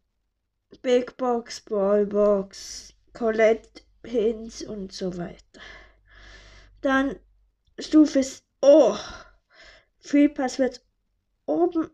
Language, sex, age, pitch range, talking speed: German, female, 20-39, 210-260 Hz, 80 wpm